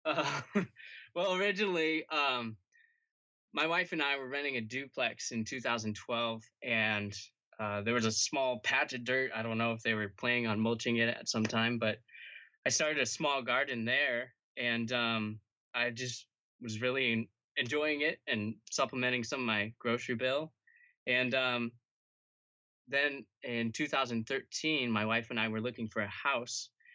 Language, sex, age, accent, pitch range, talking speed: English, male, 20-39, American, 110-130 Hz, 160 wpm